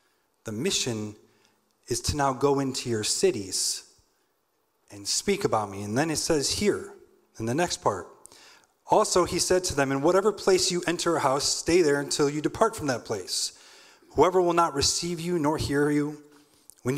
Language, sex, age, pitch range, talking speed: English, male, 30-49, 125-185 Hz, 180 wpm